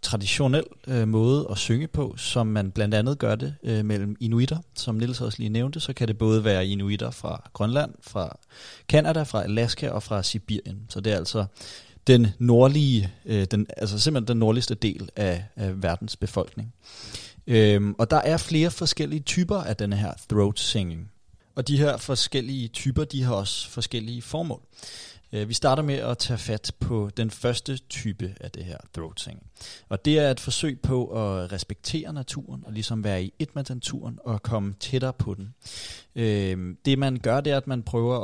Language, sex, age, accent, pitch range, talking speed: Danish, male, 30-49, native, 105-135 Hz, 185 wpm